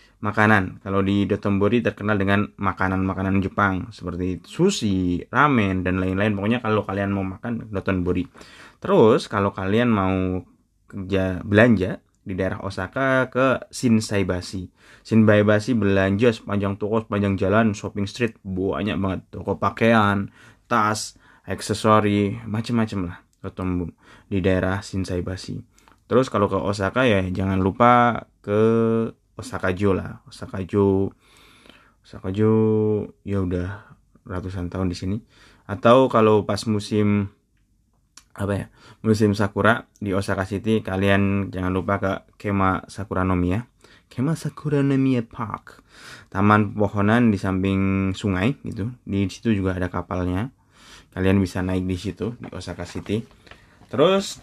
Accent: native